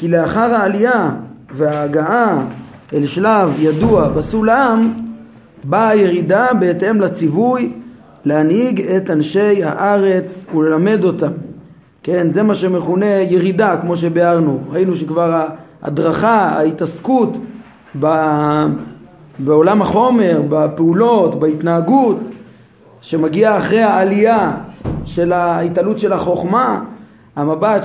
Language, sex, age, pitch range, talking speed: Hebrew, male, 30-49, 165-215 Hz, 90 wpm